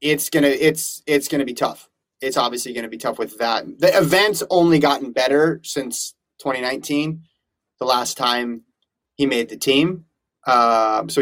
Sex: male